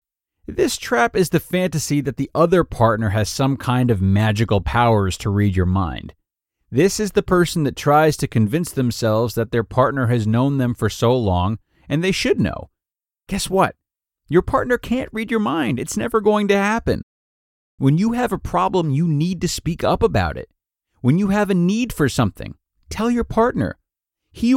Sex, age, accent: male, 40-59, American